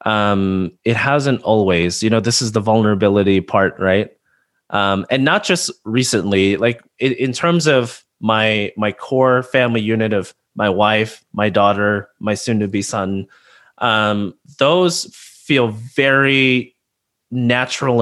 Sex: male